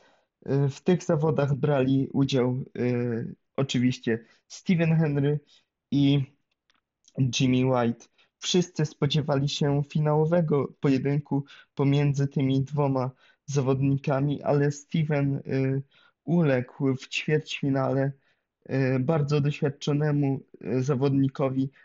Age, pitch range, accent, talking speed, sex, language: 20-39, 130-150 Hz, native, 85 wpm, male, Polish